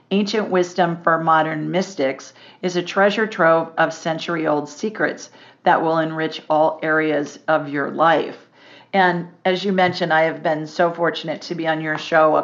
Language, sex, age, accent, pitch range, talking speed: English, female, 50-69, American, 155-180 Hz, 170 wpm